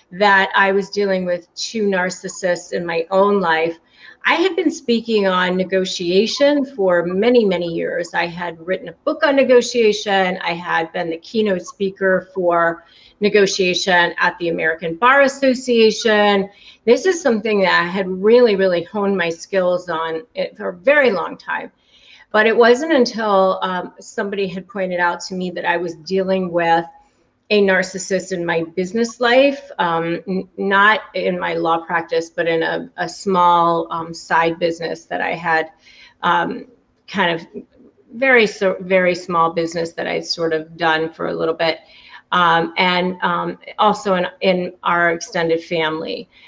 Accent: American